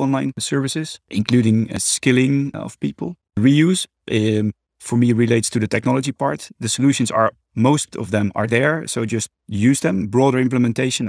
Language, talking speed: English, 160 wpm